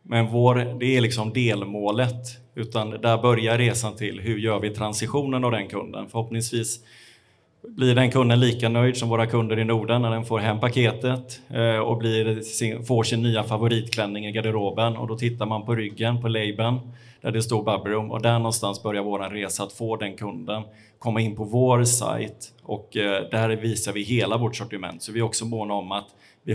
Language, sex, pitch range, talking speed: Swedish, male, 105-115 Hz, 190 wpm